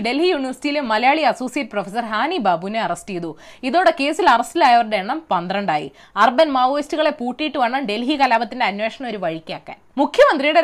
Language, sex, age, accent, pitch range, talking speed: Malayalam, female, 20-39, native, 215-320 Hz, 135 wpm